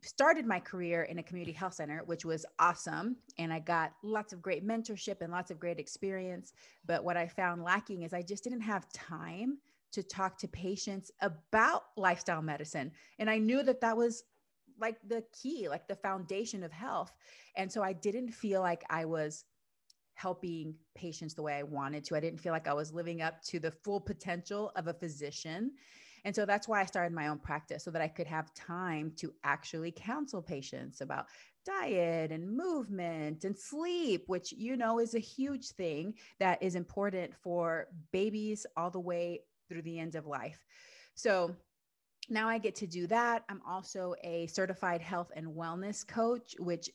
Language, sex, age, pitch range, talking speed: English, female, 30-49, 165-210 Hz, 185 wpm